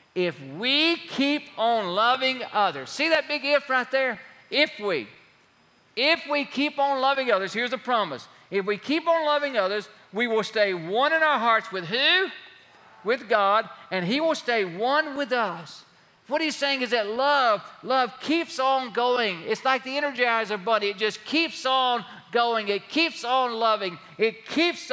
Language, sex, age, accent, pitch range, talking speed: English, male, 50-69, American, 215-285 Hz, 175 wpm